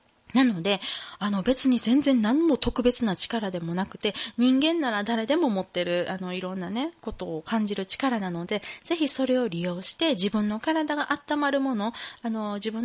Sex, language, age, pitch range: female, Japanese, 20-39, 180-260 Hz